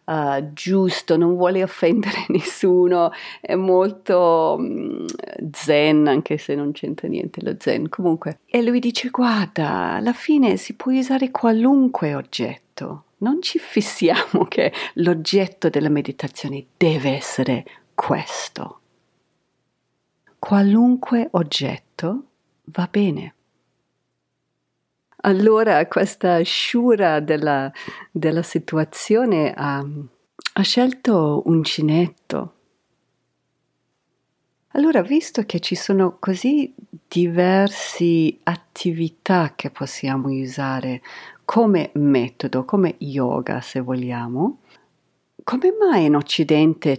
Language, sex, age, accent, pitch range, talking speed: Italian, female, 40-59, native, 150-215 Hz, 95 wpm